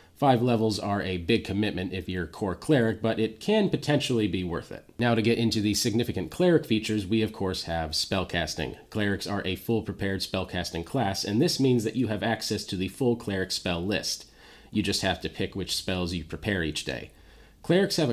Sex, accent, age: male, American, 30-49